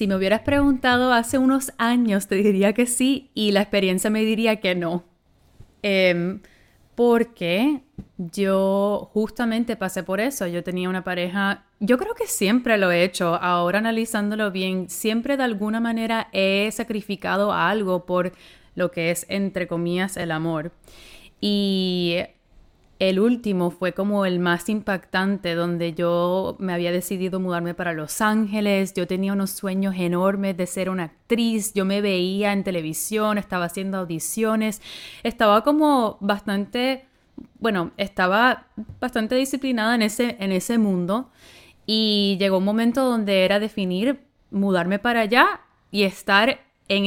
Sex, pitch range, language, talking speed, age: female, 185-230 Hz, Spanish, 145 wpm, 20-39